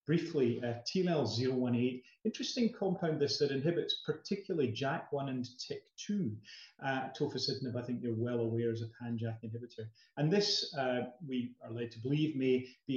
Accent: British